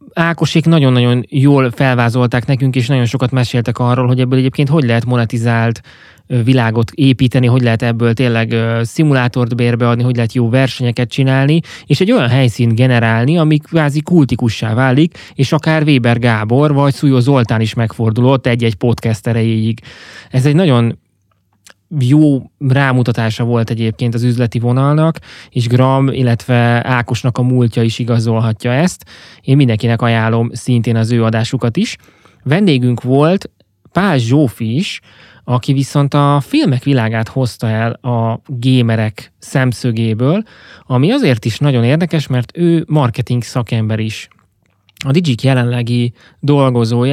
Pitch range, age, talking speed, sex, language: 115-135 Hz, 20-39, 135 wpm, male, Hungarian